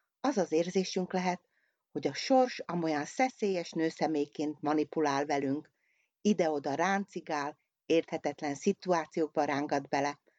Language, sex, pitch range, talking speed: Hungarian, female, 155-190 Hz, 105 wpm